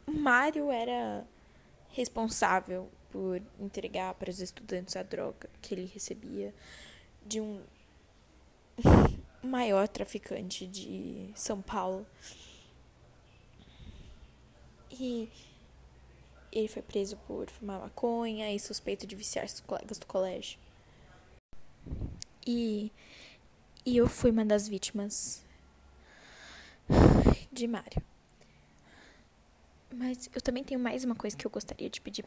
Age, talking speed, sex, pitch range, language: 10-29, 100 wpm, female, 190-240 Hz, Portuguese